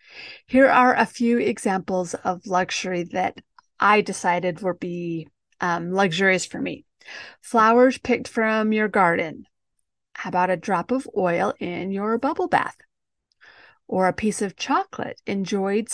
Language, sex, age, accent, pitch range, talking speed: English, female, 40-59, American, 190-245 Hz, 140 wpm